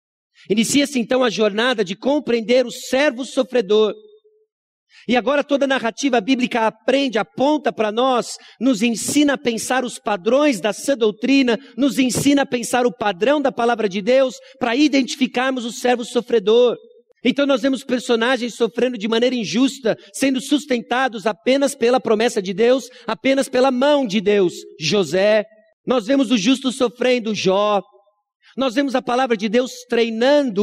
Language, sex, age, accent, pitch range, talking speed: Portuguese, male, 50-69, Brazilian, 195-260 Hz, 150 wpm